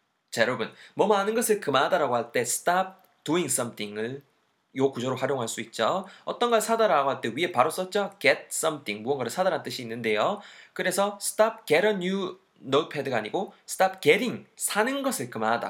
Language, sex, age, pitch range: Korean, male, 20-39, 130-210 Hz